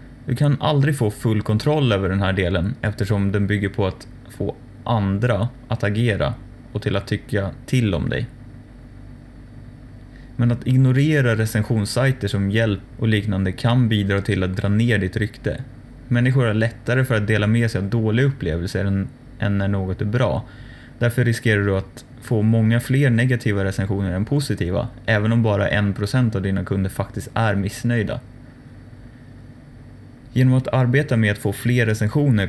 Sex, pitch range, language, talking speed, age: male, 100-125 Hz, Swedish, 160 wpm, 20-39